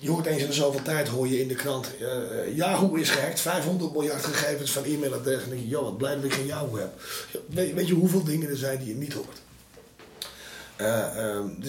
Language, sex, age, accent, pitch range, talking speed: Dutch, male, 30-49, Dutch, 130-165 Hz, 230 wpm